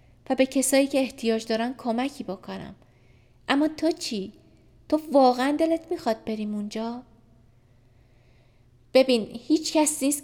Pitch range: 185-260 Hz